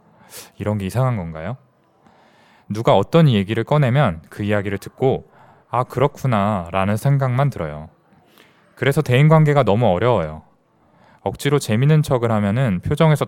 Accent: native